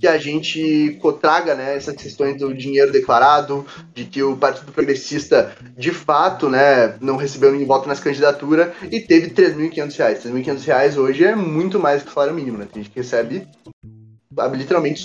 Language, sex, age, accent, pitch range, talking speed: Portuguese, male, 10-29, Brazilian, 130-165 Hz, 170 wpm